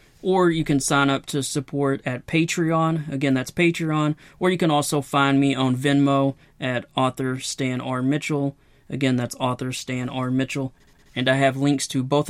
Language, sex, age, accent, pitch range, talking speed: English, male, 30-49, American, 135-155 Hz, 180 wpm